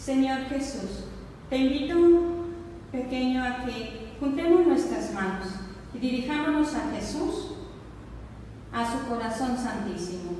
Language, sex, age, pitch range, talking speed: Spanish, female, 40-59, 205-285 Hz, 110 wpm